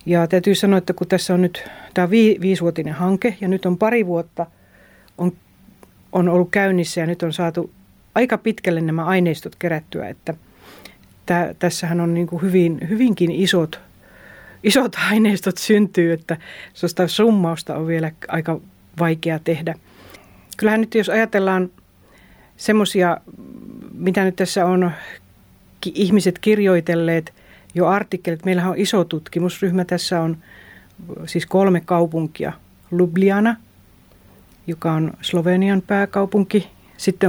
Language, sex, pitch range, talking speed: Finnish, female, 160-195 Hz, 125 wpm